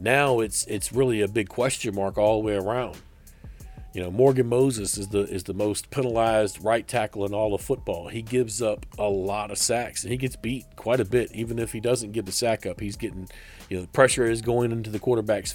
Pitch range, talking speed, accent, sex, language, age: 105-125 Hz, 235 wpm, American, male, English, 40-59